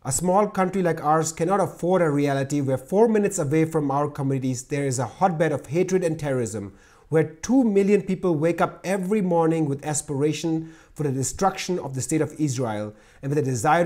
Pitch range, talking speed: 140-175 Hz, 200 wpm